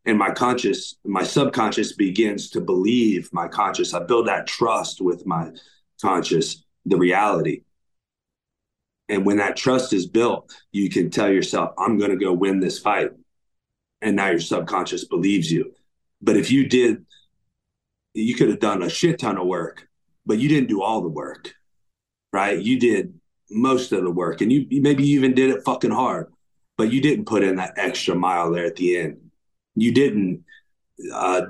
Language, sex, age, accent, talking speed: English, male, 30-49, American, 175 wpm